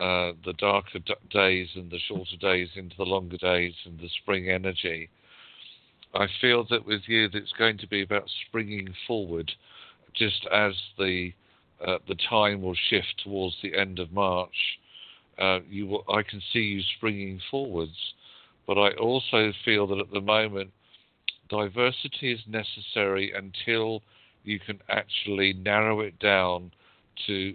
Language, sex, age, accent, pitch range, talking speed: English, male, 50-69, British, 95-110 Hz, 155 wpm